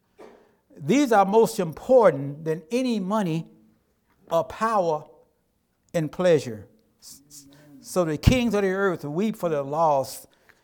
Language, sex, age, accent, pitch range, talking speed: English, male, 60-79, American, 150-200 Hz, 120 wpm